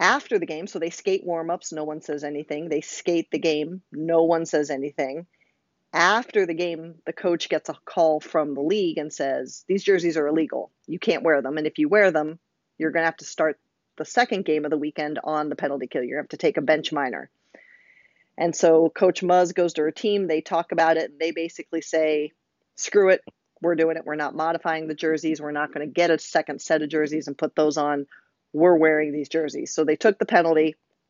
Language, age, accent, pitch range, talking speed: English, 40-59, American, 150-175 Hz, 230 wpm